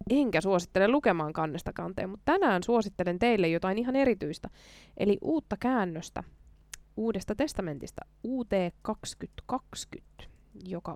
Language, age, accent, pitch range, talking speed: Finnish, 20-39, native, 175-240 Hz, 105 wpm